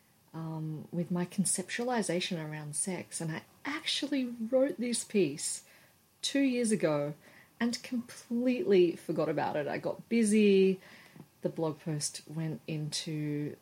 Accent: Australian